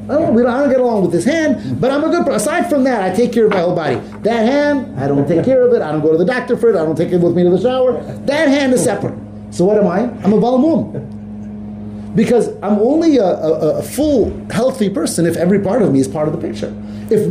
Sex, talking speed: male, 275 wpm